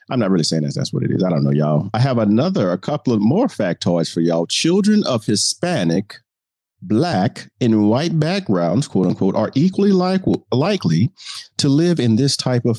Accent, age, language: American, 40-59, English